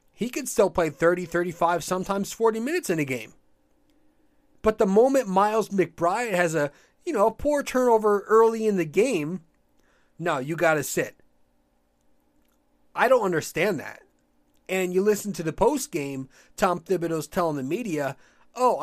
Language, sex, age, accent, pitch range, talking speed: English, male, 30-49, American, 140-215 Hz, 155 wpm